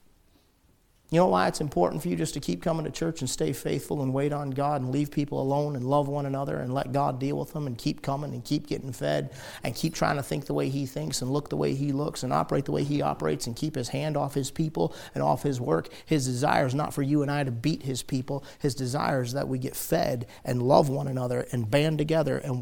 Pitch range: 125-150 Hz